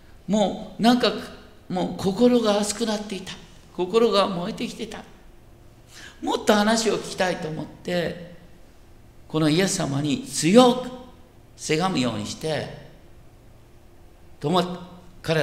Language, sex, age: Japanese, male, 50-69